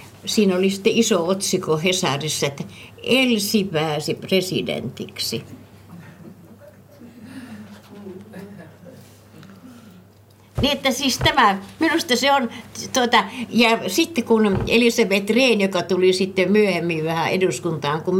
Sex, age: female, 60-79